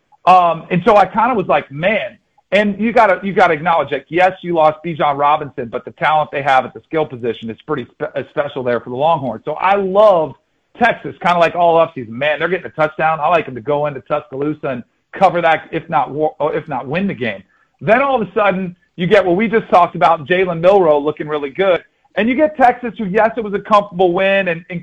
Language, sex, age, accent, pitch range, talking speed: English, male, 40-59, American, 150-195 Hz, 250 wpm